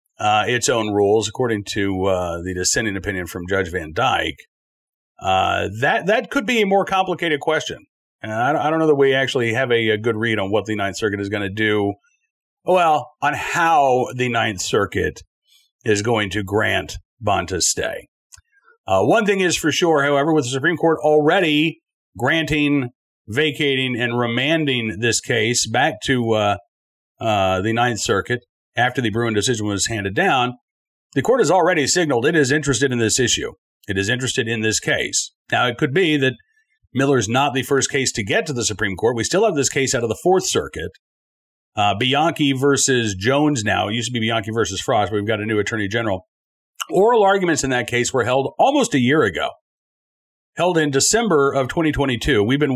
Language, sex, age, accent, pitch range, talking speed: English, male, 40-59, American, 110-150 Hz, 195 wpm